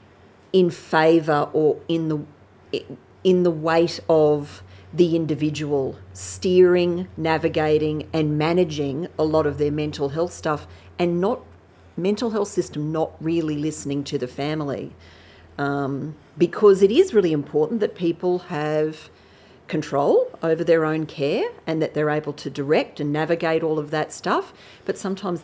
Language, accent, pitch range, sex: English, Australian, 145-175 Hz, female